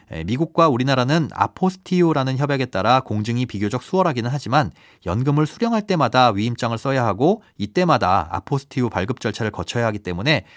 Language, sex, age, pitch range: Korean, male, 30-49, 110-160 Hz